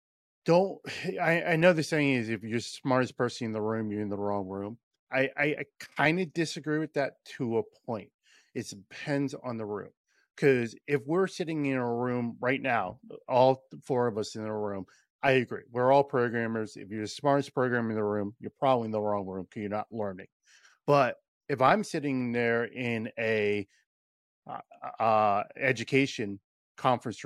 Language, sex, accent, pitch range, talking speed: English, male, American, 105-140 Hz, 185 wpm